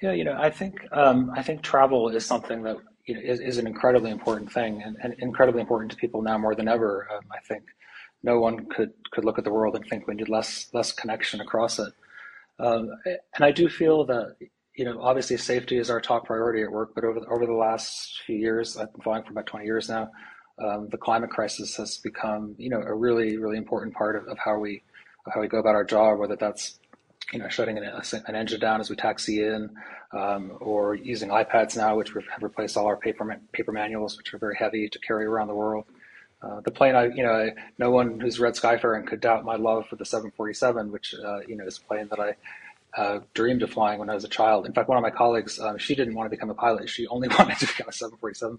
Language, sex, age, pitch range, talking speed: English, male, 30-49, 110-120 Hz, 245 wpm